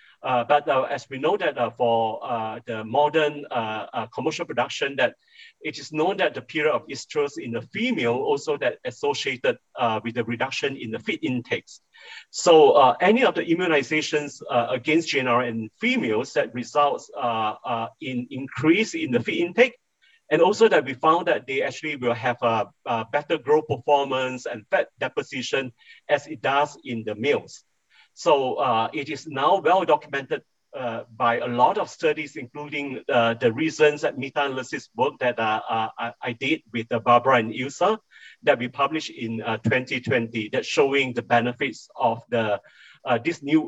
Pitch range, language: 120-170 Hz, Chinese